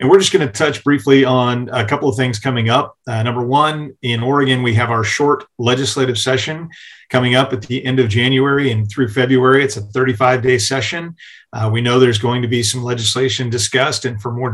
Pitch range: 120-135 Hz